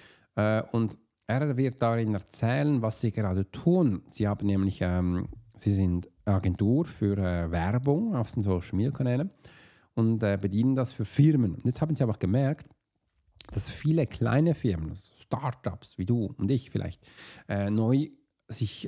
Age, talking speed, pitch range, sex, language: 40-59, 165 wpm, 100-135 Hz, male, German